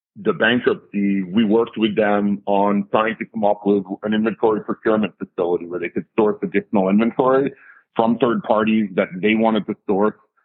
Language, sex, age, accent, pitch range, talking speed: English, male, 40-59, American, 100-115 Hz, 170 wpm